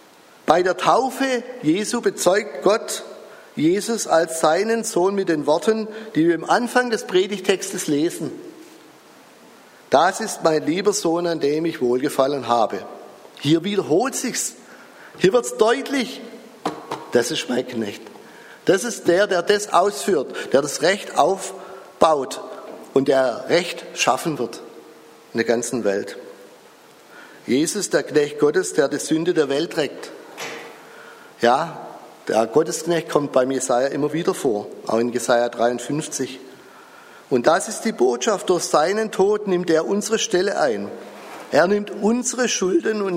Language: German